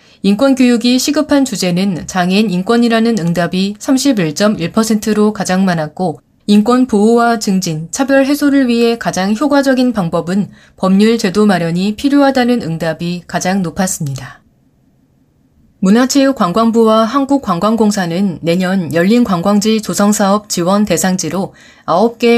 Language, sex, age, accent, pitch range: Korean, female, 20-39, native, 175-230 Hz